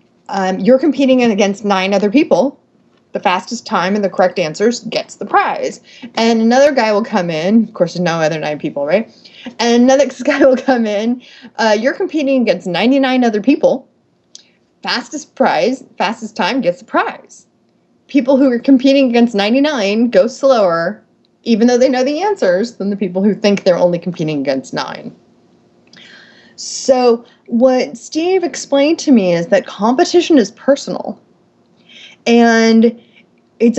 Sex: female